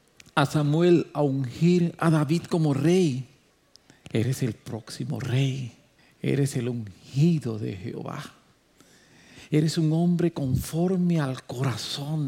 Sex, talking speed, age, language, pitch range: male, 110 wpm, 50-69, English, 120-155 Hz